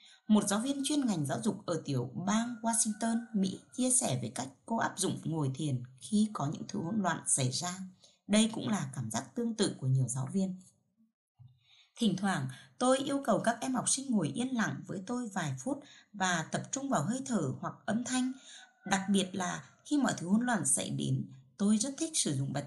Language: Vietnamese